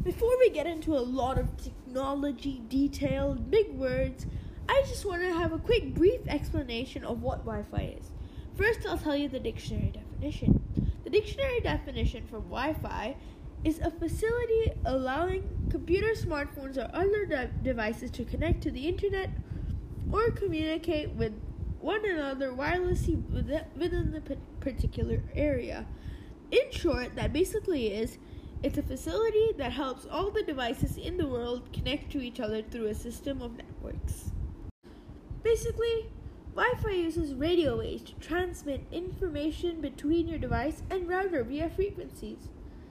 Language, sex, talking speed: English, female, 145 wpm